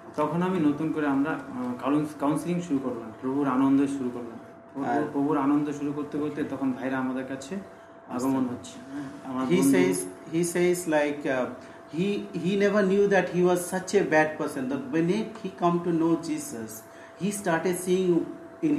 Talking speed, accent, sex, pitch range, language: 95 wpm, Indian, male, 140-185 Hz, English